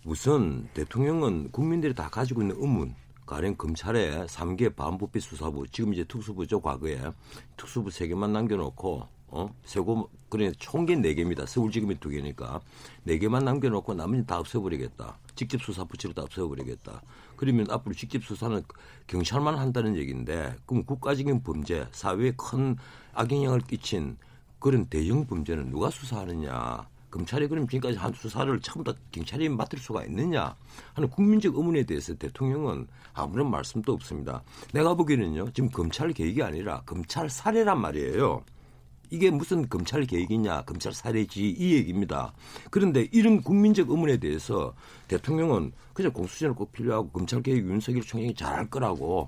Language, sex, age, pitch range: Korean, male, 60-79, 85-135 Hz